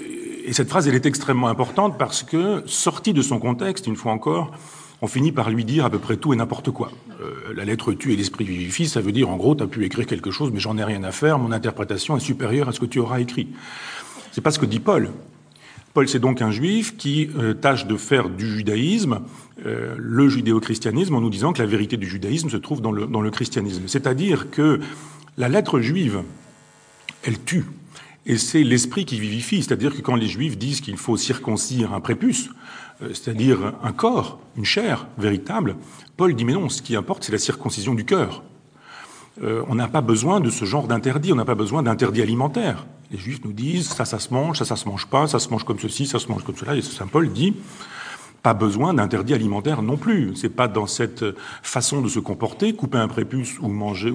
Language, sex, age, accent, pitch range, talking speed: French, male, 40-59, French, 110-150 Hz, 225 wpm